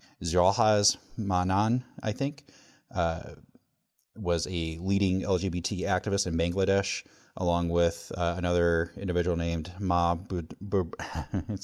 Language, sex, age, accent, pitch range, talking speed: English, male, 30-49, American, 85-95 Hz, 100 wpm